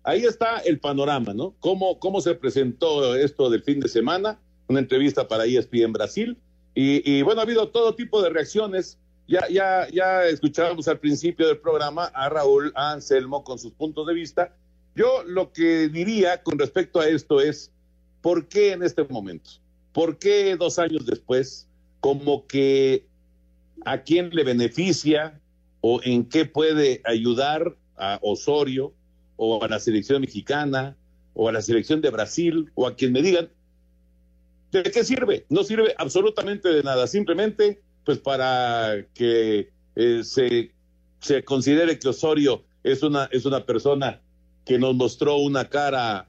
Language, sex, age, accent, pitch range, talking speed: Spanish, male, 50-69, Mexican, 115-175 Hz, 155 wpm